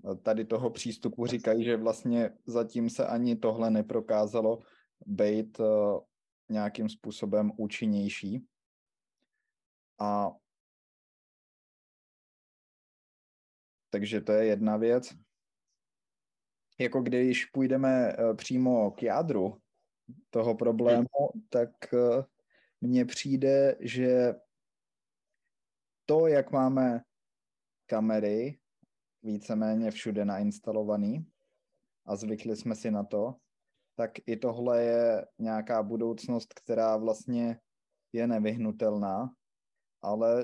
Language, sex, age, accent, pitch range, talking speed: Czech, male, 20-39, native, 110-120 Hz, 85 wpm